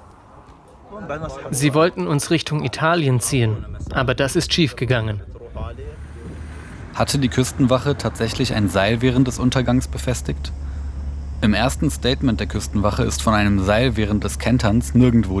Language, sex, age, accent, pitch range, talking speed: German, male, 30-49, German, 100-125 Hz, 130 wpm